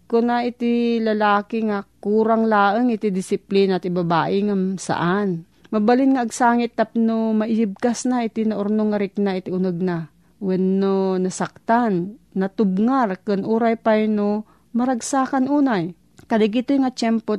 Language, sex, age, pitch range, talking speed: Filipino, female, 40-59, 180-220 Hz, 140 wpm